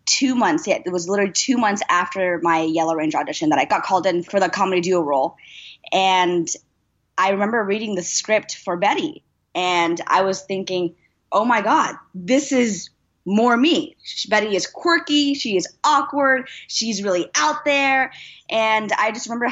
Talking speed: 170 wpm